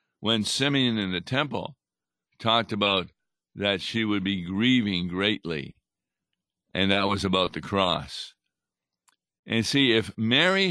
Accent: American